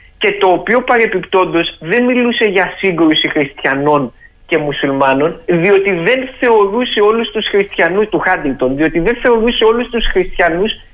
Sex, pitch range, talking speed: male, 145-220 Hz, 135 wpm